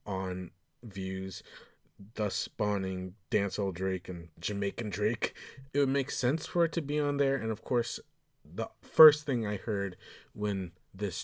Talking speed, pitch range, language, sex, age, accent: 155 wpm, 95-115 Hz, English, male, 30-49, American